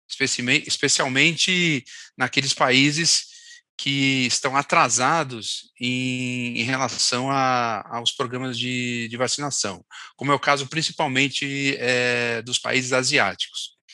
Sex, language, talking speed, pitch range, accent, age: male, Portuguese, 105 wpm, 120-145 Hz, Brazilian, 40-59